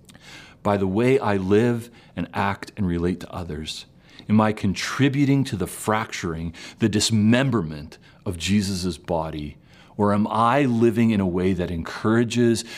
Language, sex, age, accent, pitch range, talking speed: English, male, 40-59, American, 85-110 Hz, 145 wpm